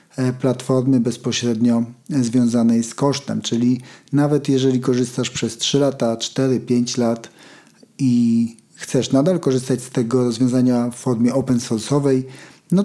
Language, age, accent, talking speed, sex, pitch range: Polish, 40-59, native, 125 wpm, male, 120-140 Hz